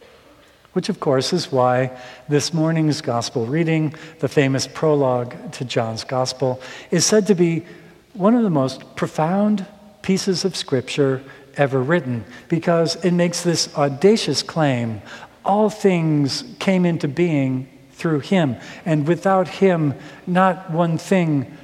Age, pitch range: 50-69, 135-180 Hz